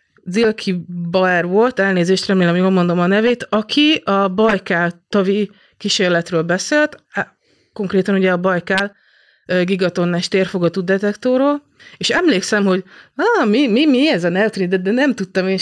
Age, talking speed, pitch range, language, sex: 30-49, 140 wpm, 175-210 Hz, Hungarian, female